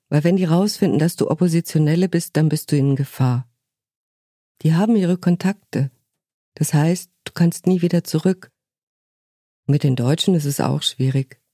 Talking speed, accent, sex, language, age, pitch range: 160 wpm, German, female, German, 50-69, 130-170 Hz